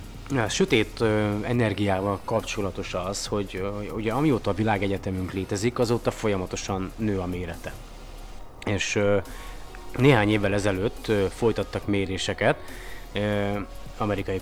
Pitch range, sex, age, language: 95-115 Hz, male, 30-49, Hungarian